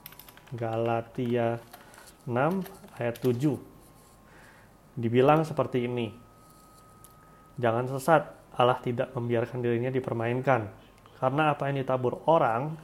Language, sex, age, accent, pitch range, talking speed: Indonesian, male, 30-49, native, 120-150 Hz, 90 wpm